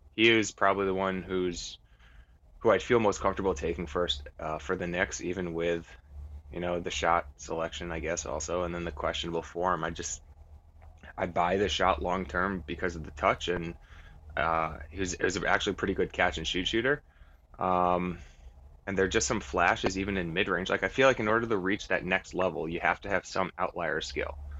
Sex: male